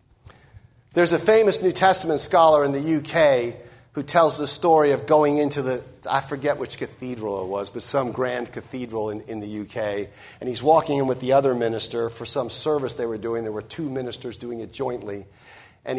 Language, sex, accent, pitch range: English, male, American, 120-205 Hz